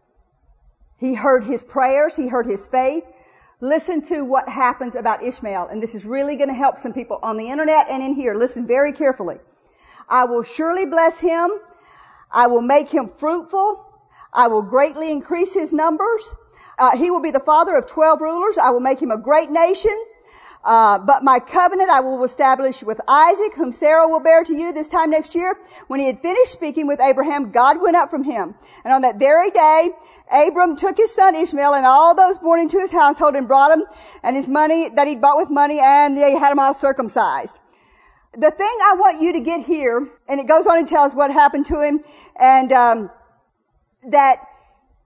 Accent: American